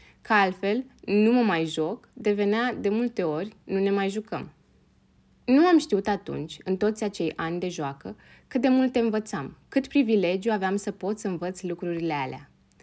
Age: 20-39